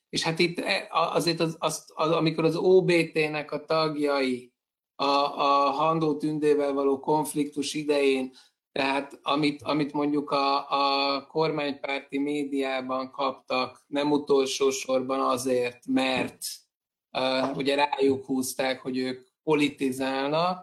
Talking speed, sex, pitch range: 120 wpm, male, 135-155 Hz